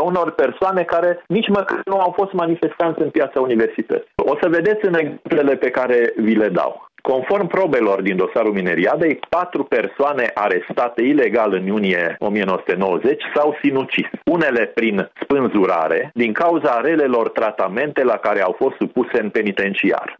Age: 40-59